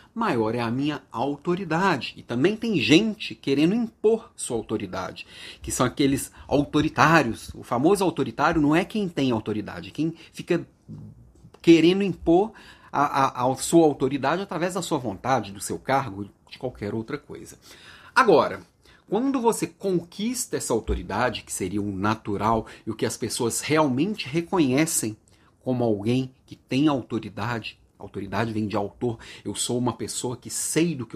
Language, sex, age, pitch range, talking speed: Portuguese, male, 40-59, 110-165 Hz, 150 wpm